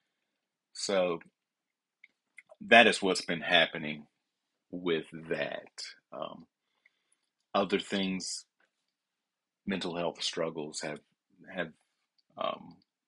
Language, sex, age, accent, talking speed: English, male, 40-59, American, 80 wpm